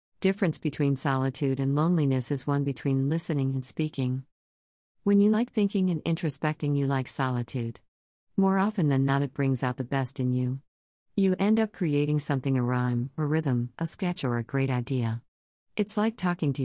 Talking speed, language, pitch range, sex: 185 wpm, English, 130-170 Hz, female